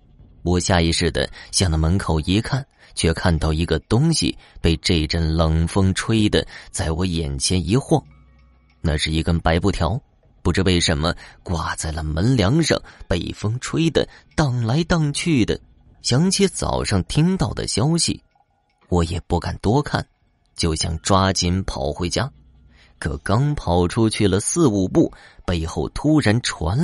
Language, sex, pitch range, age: Chinese, male, 85-130 Hz, 30-49